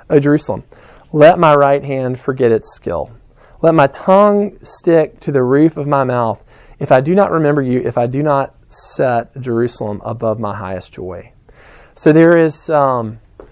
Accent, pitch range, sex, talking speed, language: American, 130-165 Hz, male, 175 wpm, English